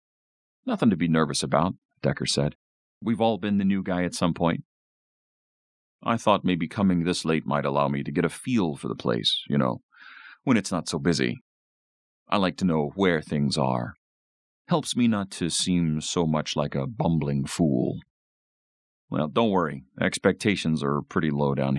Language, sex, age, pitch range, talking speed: English, male, 40-59, 70-95 Hz, 180 wpm